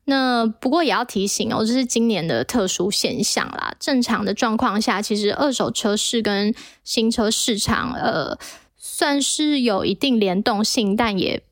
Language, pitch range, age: Chinese, 205-245 Hz, 20-39